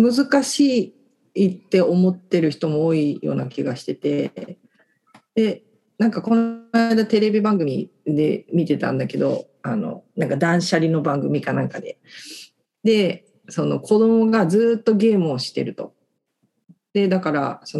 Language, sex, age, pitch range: Japanese, female, 40-59, 150-205 Hz